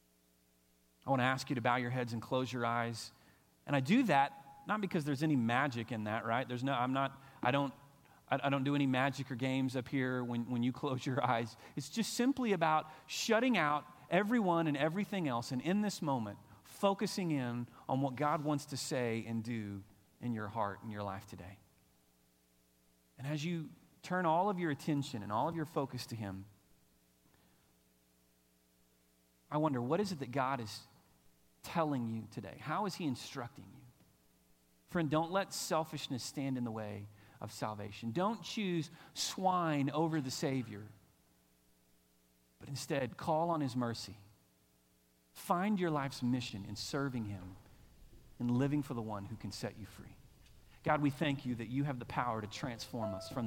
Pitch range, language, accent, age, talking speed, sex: 105-150 Hz, English, American, 40-59, 180 wpm, male